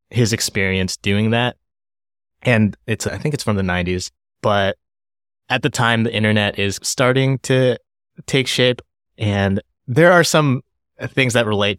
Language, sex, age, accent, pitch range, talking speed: English, male, 20-39, American, 95-115 Hz, 155 wpm